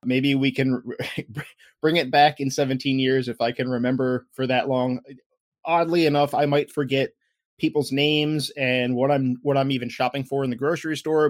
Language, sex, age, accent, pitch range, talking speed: English, male, 20-39, American, 125-145 Hz, 185 wpm